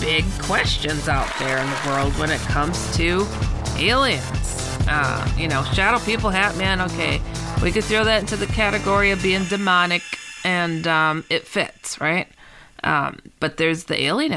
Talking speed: 165 wpm